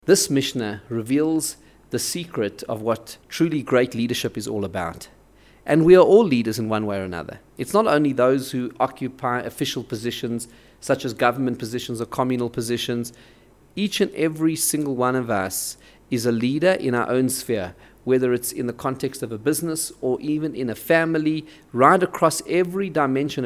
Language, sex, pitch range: English, male, 120-155 Hz